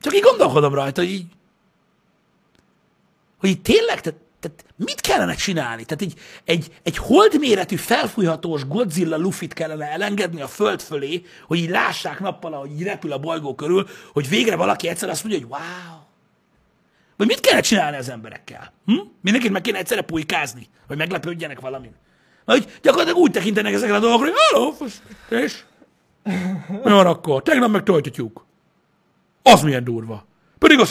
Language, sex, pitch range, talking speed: Hungarian, male, 135-195 Hz, 155 wpm